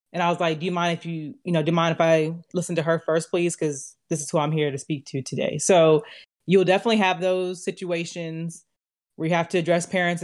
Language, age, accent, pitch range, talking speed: English, 20-39, American, 160-190 Hz, 215 wpm